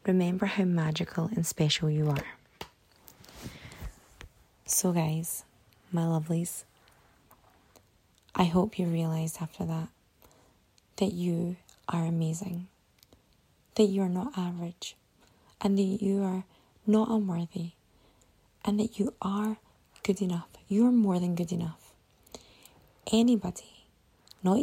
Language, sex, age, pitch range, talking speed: English, female, 20-39, 165-200 Hz, 110 wpm